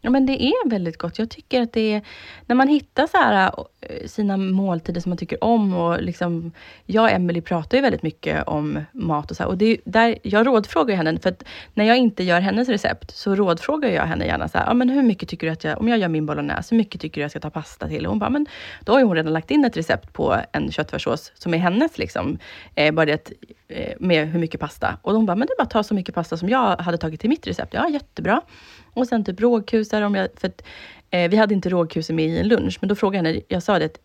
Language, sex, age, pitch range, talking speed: Swedish, female, 30-49, 165-230 Hz, 270 wpm